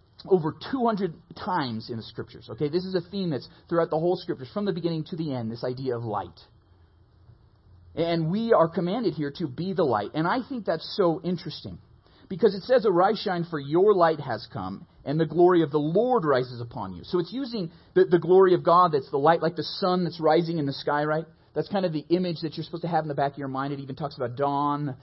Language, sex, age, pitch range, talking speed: English, male, 30-49, 125-175 Hz, 240 wpm